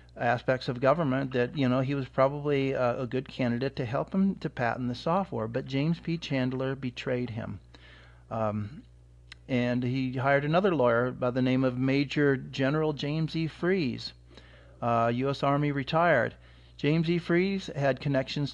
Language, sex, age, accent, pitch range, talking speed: English, male, 40-59, American, 115-145 Hz, 160 wpm